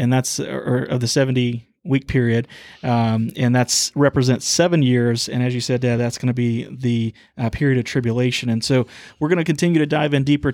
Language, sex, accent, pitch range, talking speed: English, male, American, 125-145 Hz, 205 wpm